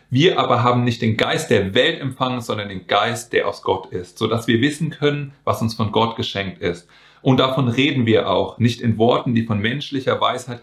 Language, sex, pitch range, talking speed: German, male, 115-140 Hz, 215 wpm